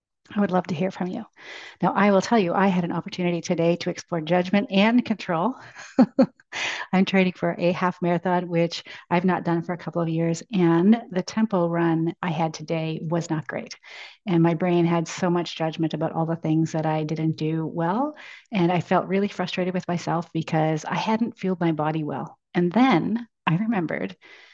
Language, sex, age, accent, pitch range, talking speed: English, female, 40-59, American, 170-205 Hz, 200 wpm